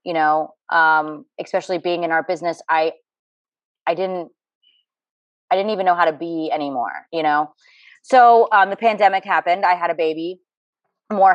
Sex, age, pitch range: female, 20-39, 155-180 Hz